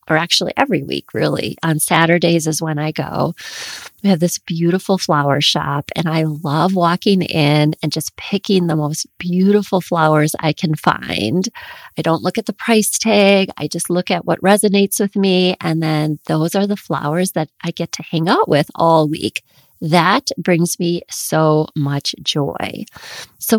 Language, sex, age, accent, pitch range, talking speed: English, female, 30-49, American, 155-195 Hz, 175 wpm